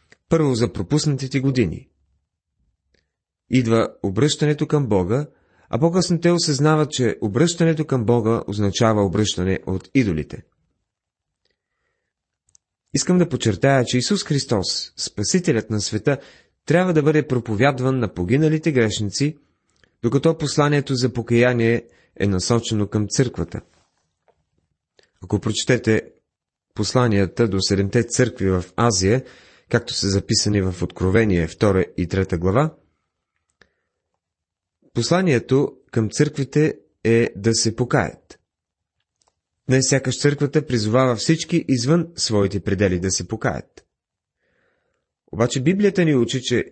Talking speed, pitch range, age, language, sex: 105 wpm, 100-145 Hz, 30-49, Bulgarian, male